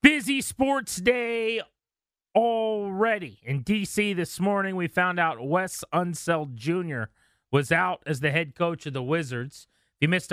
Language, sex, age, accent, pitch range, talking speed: English, male, 30-49, American, 130-170 Hz, 150 wpm